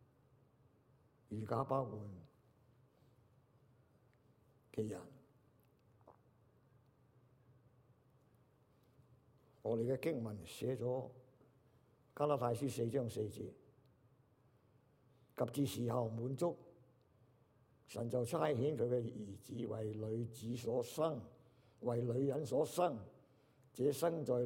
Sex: male